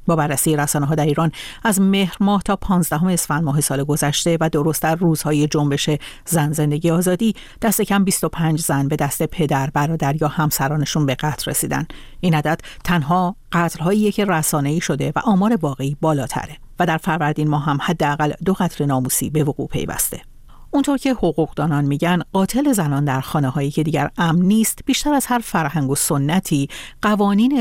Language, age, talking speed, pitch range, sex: Persian, 50-69, 170 wpm, 145-190 Hz, female